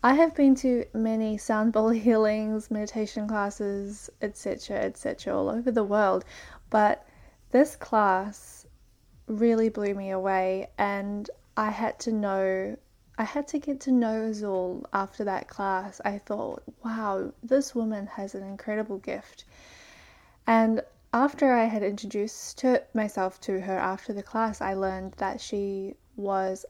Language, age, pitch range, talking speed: English, 10-29, 200-235 Hz, 140 wpm